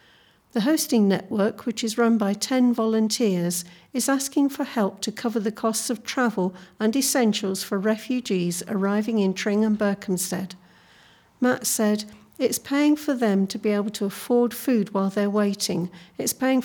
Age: 50-69